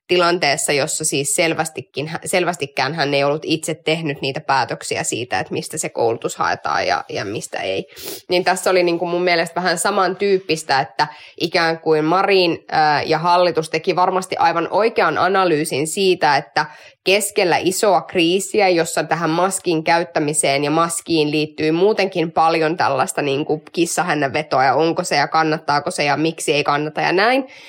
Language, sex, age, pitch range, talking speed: Finnish, female, 20-39, 155-190 Hz, 155 wpm